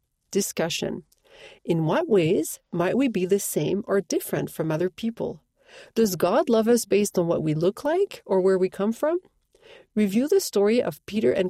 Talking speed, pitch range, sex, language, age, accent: 185 wpm, 180-280 Hz, female, English, 40-59, Canadian